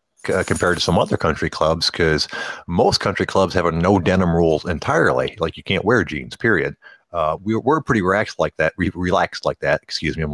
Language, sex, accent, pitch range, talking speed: English, male, American, 80-105 Hz, 215 wpm